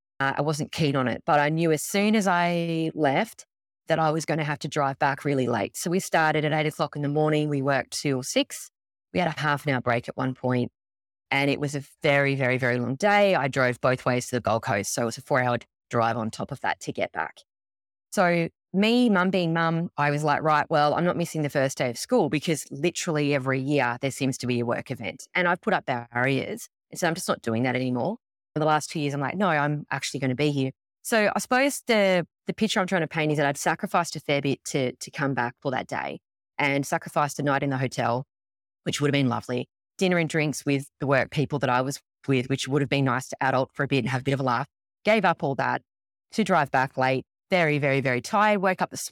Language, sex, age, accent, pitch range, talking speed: English, female, 20-39, Australian, 130-165 Hz, 265 wpm